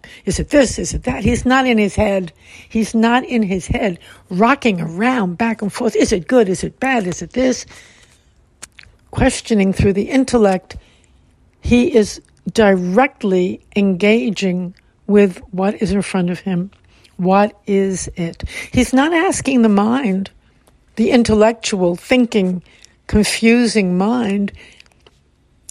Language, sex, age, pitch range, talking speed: English, female, 60-79, 190-230 Hz, 135 wpm